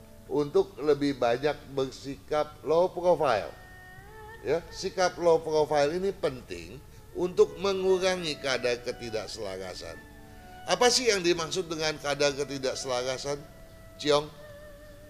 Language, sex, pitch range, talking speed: Indonesian, male, 110-165 Hz, 95 wpm